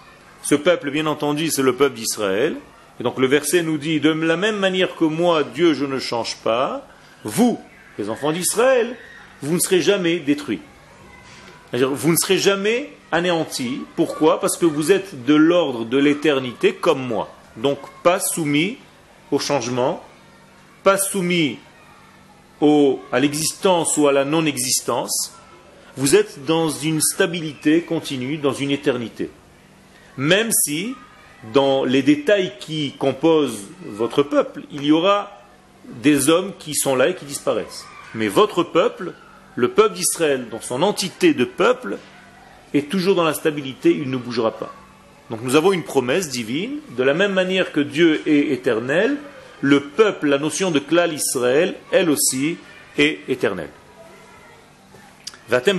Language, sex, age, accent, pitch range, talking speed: French, male, 40-59, French, 140-185 Hz, 150 wpm